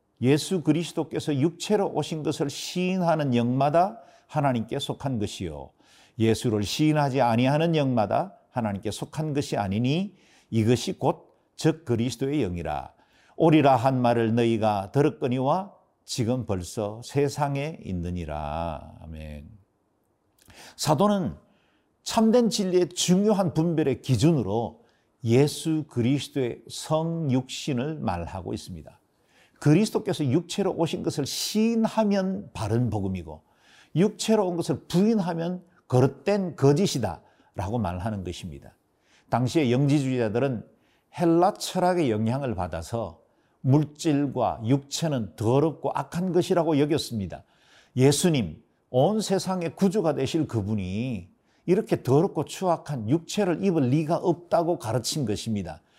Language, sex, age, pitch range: Korean, male, 50-69, 115-165 Hz